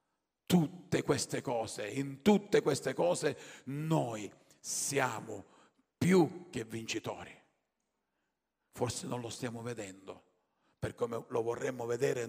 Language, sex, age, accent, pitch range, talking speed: Italian, male, 50-69, native, 115-140 Hz, 105 wpm